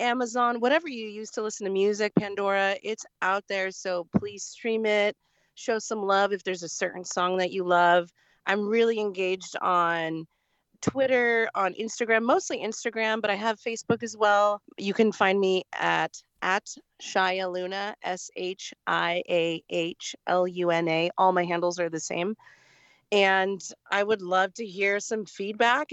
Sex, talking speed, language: female, 150 wpm, English